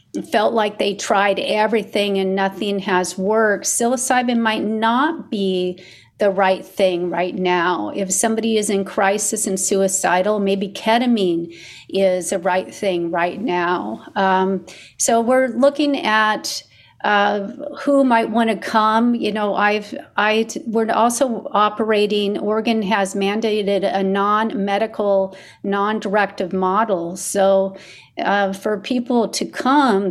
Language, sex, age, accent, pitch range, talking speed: English, female, 40-59, American, 190-225 Hz, 130 wpm